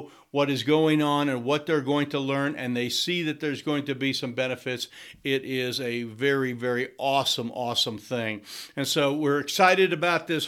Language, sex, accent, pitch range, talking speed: English, male, American, 135-170 Hz, 195 wpm